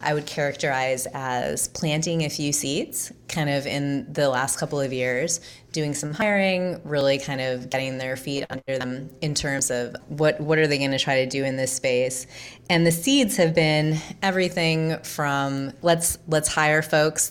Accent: American